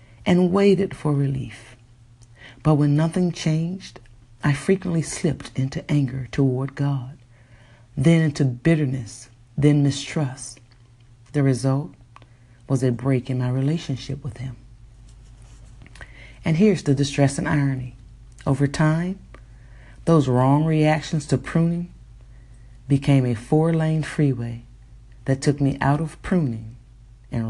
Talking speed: 120 wpm